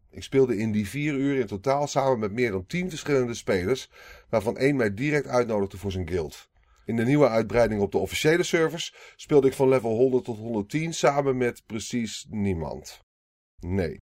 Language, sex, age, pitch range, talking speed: Dutch, male, 30-49, 95-125 Hz, 180 wpm